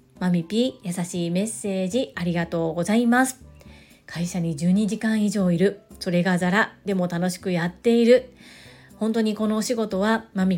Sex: female